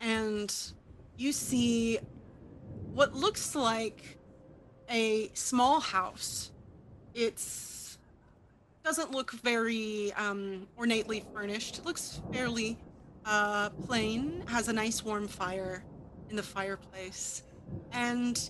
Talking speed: 95 wpm